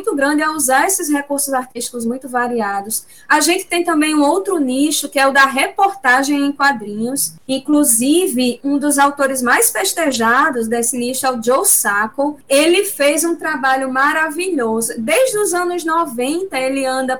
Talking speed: 160 wpm